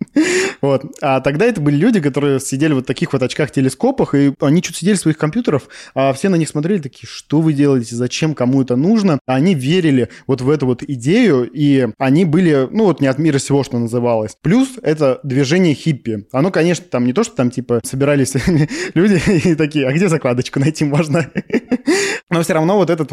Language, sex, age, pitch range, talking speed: Russian, male, 20-39, 135-170 Hz, 200 wpm